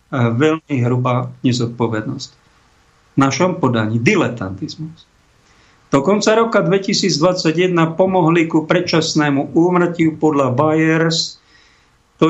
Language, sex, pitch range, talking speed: Slovak, male, 130-160 Hz, 90 wpm